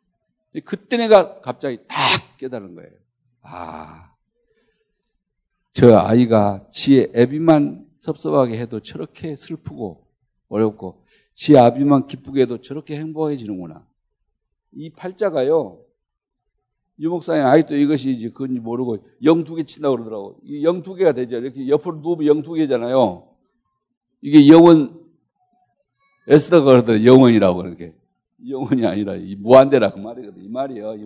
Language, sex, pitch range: Korean, male, 115-165 Hz